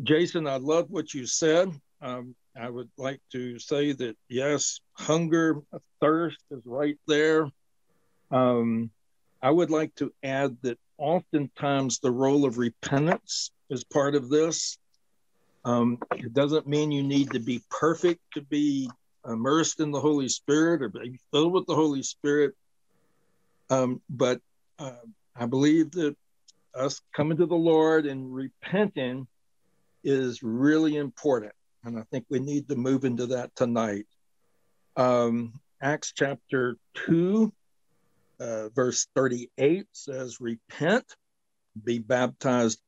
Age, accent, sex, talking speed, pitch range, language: 60-79, American, male, 135 wpm, 120-155 Hz, English